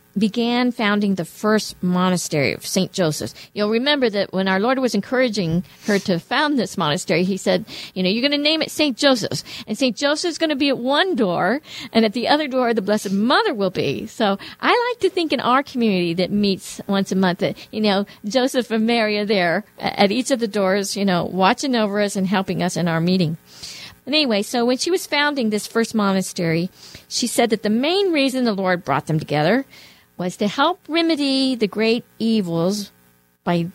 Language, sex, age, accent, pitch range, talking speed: English, female, 50-69, American, 185-255 Hz, 210 wpm